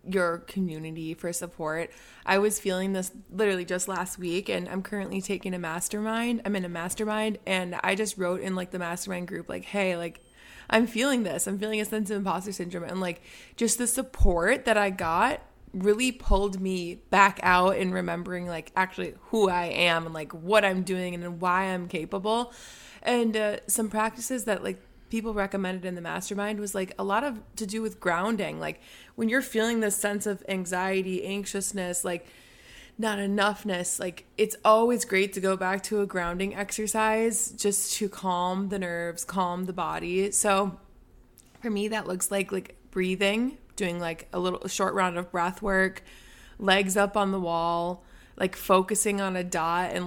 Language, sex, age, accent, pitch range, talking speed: English, female, 20-39, American, 180-210 Hz, 180 wpm